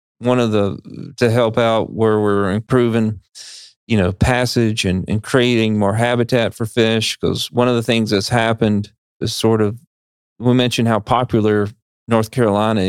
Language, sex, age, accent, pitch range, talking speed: English, male, 40-59, American, 105-120 Hz, 165 wpm